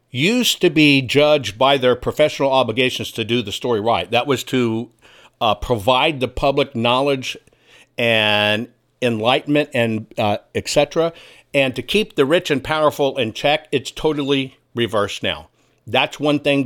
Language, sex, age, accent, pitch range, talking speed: English, male, 60-79, American, 115-150 Hz, 155 wpm